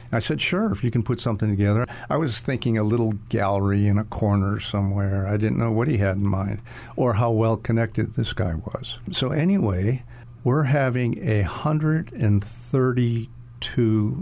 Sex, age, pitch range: male, 50-69, 110-120 Hz